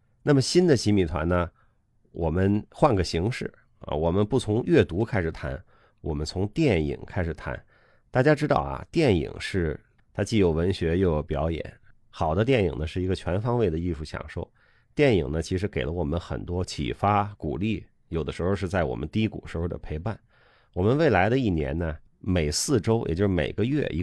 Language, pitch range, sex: Chinese, 80-110 Hz, male